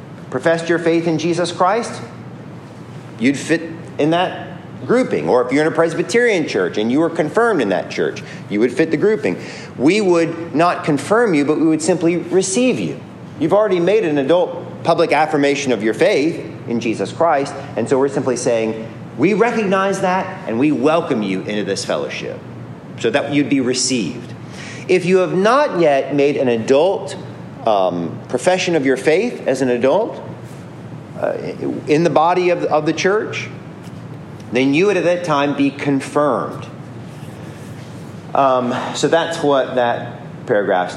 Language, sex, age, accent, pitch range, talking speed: English, male, 40-59, American, 125-170 Hz, 165 wpm